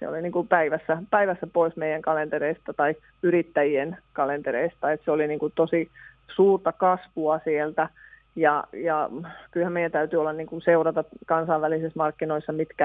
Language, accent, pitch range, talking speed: Finnish, native, 155-170 Hz, 150 wpm